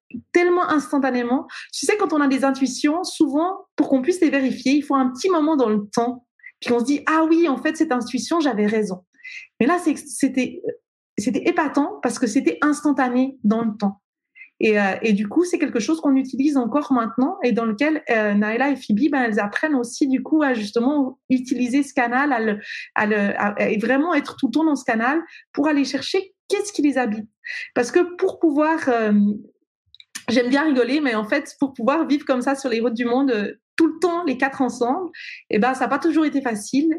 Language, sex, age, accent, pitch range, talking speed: French, female, 30-49, French, 245-315 Hz, 215 wpm